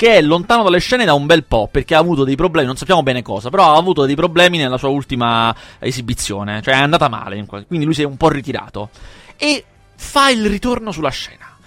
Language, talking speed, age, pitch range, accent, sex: Italian, 225 wpm, 30-49, 125-180 Hz, native, male